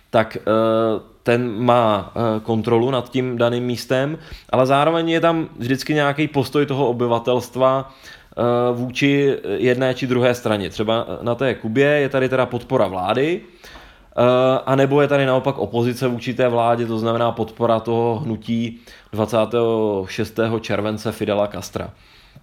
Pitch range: 115-135 Hz